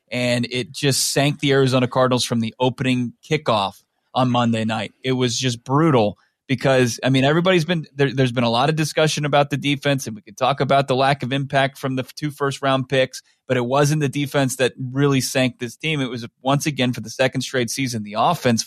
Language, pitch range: English, 125-145 Hz